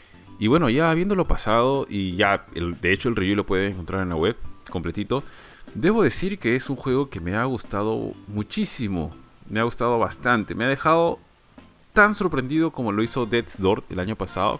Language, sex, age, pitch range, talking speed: Spanish, male, 30-49, 100-130 Hz, 195 wpm